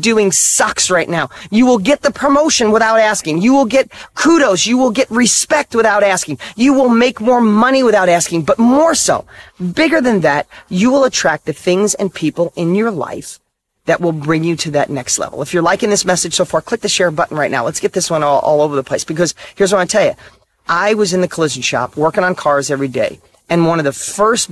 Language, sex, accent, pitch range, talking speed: English, male, American, 155-220 Hz, 235 wpm